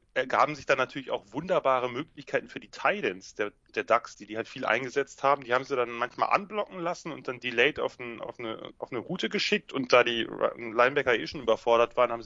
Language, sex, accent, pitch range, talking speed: German, male, German, 115-150 Hz, 220 wpm